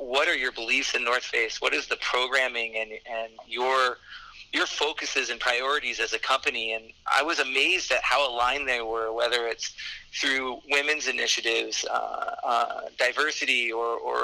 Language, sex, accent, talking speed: English, male, American, 170 wpm